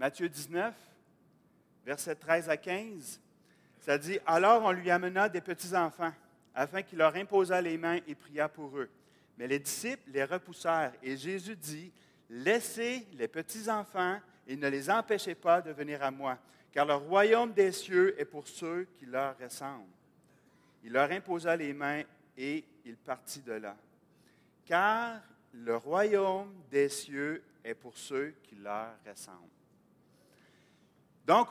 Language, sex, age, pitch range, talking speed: French, male, 40-59, 140-195 Hz, 150 wpm